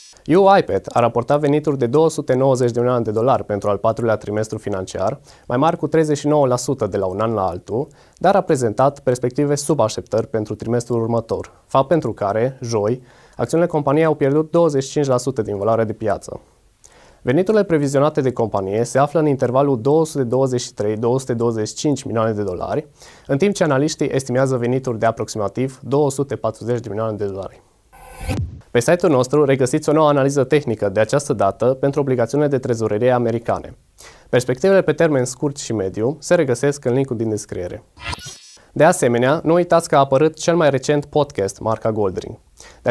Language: Romanian